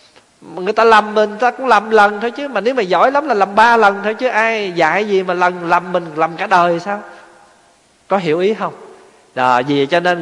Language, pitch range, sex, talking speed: Vietnamese, 160-235 Hz, male, 230 wpm